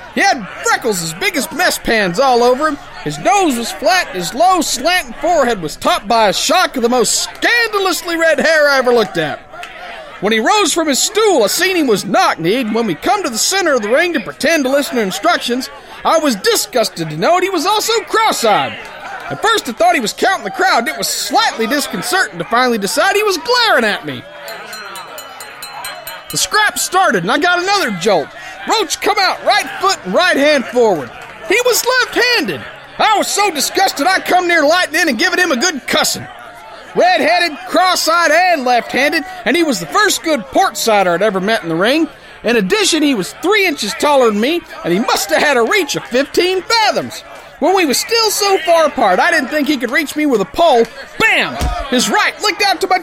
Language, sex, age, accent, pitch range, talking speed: English, male, 40-59, American, 260-375 Hz, 215 wpm